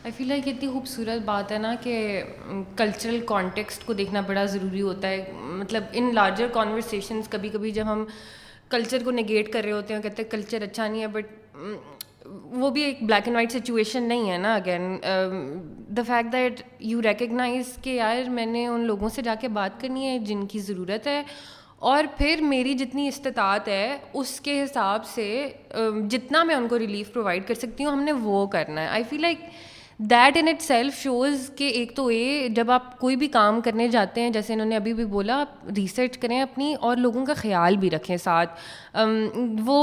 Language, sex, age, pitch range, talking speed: Urdu, female, 20-39, 210-265 Hz, 190 wpm